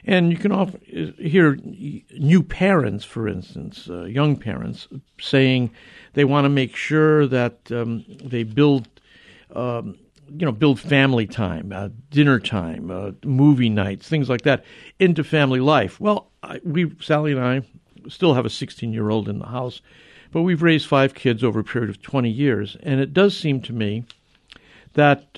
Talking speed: 170 wpm